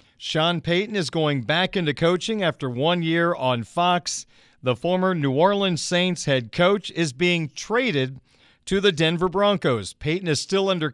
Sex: male